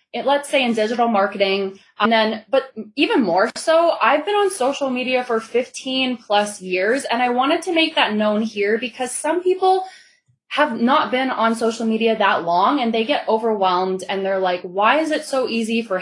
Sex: female